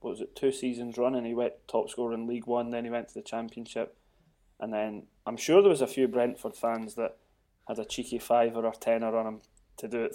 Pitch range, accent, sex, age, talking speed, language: 110-130 Hz, British, male, 20-39, 240 wpm, English